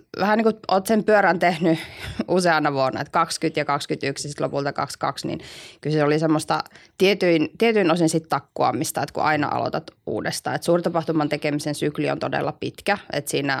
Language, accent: Finnish, native